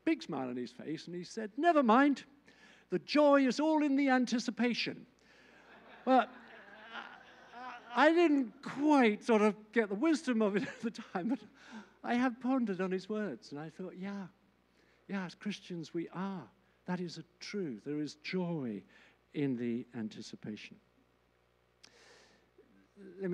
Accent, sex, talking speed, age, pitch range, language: British, male, 150 wpm, 50-69, 160-230 Hz, English